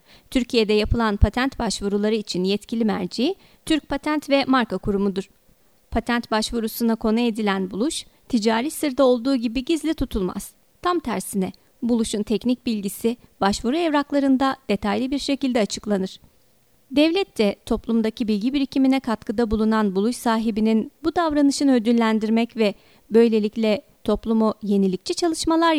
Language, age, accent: Turkish, 40-59, native